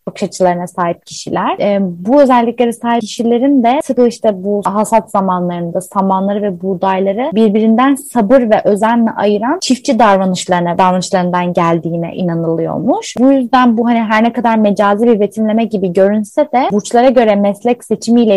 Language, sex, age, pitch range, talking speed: Turkish, female, 20-39, 190-240 Hz, 145 wpm